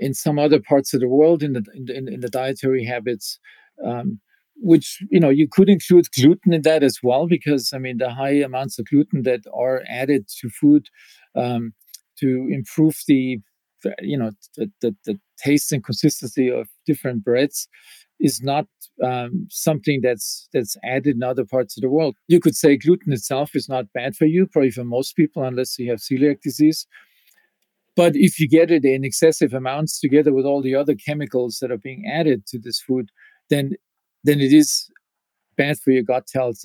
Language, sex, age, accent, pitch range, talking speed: English, male, 50-69, German, 130-160 Hz, 195 wpm